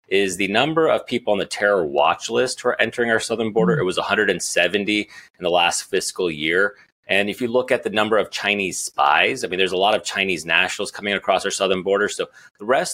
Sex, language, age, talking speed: male, English, 30-49, 230 wpm